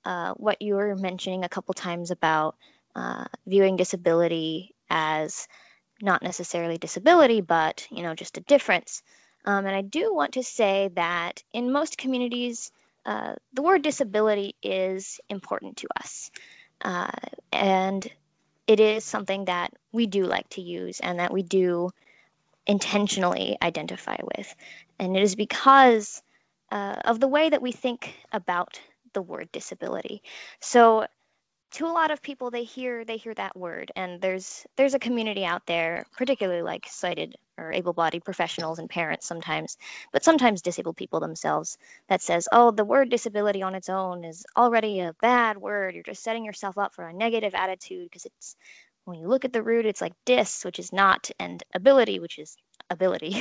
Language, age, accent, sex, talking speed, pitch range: English, 20-39, American, female, 165 wpm, 180-245 Hz